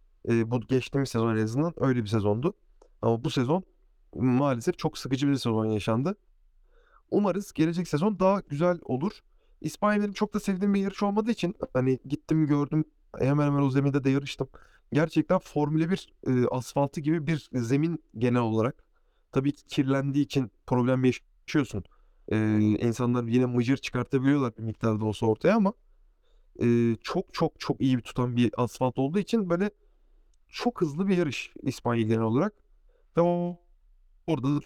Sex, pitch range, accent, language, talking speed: male, 125-180 Hz, native, Turkish, 145 wpm